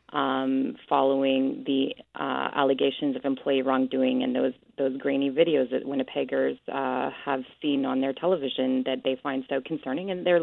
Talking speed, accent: 160 wpm, American